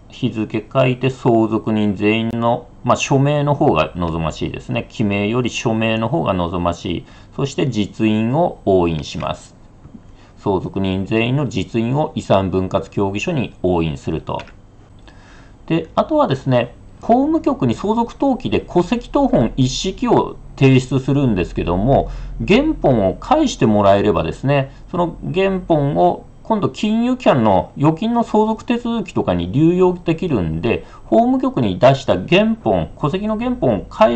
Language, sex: Japanese, male